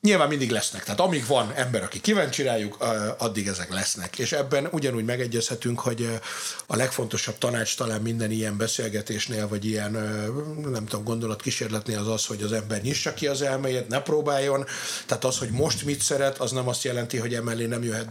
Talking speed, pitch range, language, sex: 175 wpm, 110-140 Hz, Hungarian, male